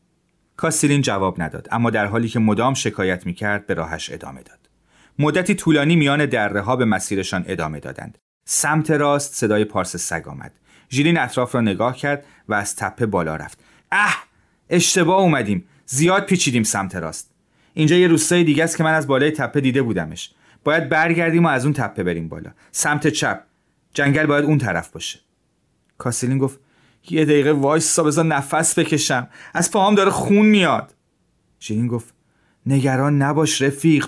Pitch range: 105-155 Hz